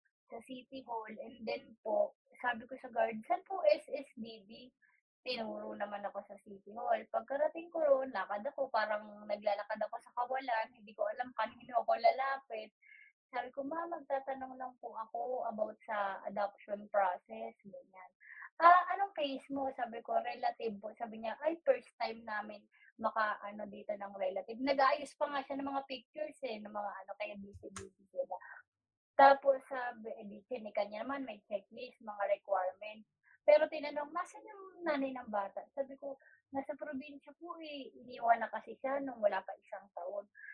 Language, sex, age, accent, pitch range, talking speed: Filipino, female, 20-39, native, 220-295 Hz, 170 wpm